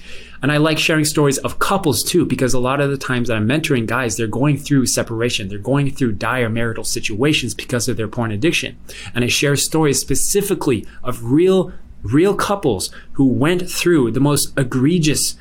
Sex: male